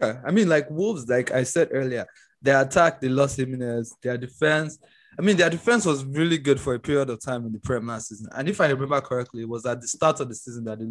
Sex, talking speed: male, 255 wpm